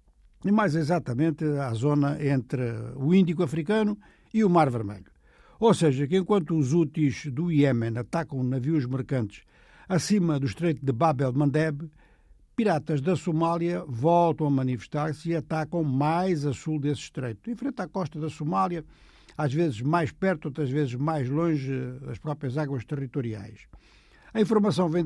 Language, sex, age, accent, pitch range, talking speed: Portuguese, male, 60-79, Brazilian, 140-175 Hz, 155 wpm